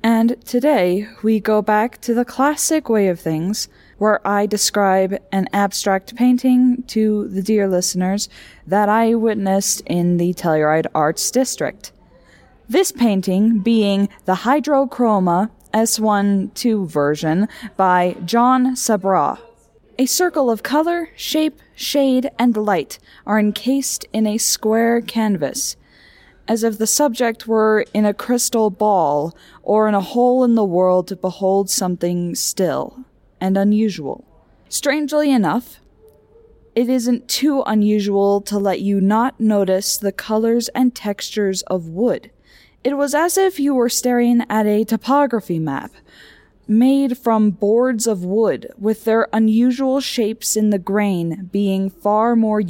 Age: 10-29